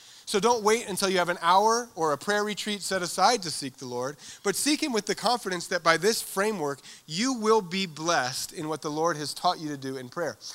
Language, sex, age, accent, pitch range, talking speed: English, male, 30-49, American, 145-200 Hz, 245 wpm